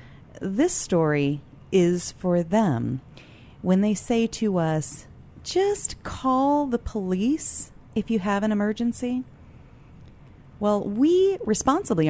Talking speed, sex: 110 wpm, female